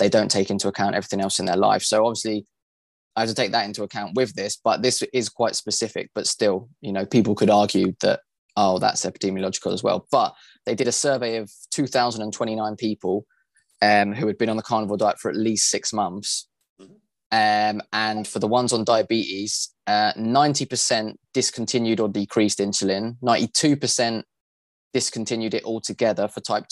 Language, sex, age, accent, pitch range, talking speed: English, male, 20-39, British, 105-115 Hz, 175 wpm